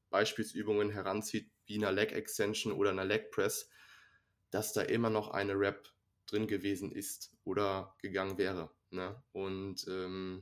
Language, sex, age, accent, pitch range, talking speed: German, male, 20-39, German, 100-115 Hz, 145 wpm